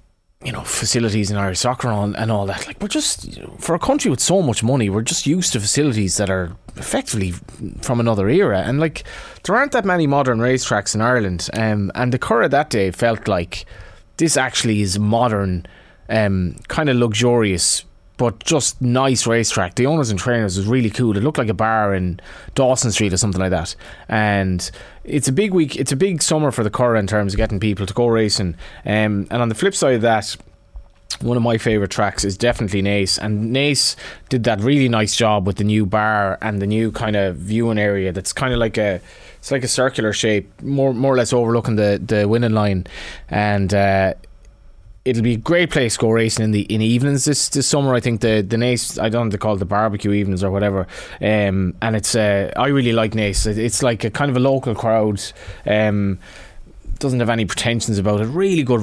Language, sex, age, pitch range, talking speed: English, male, 20-39, 100-125 Hz, 215 wpm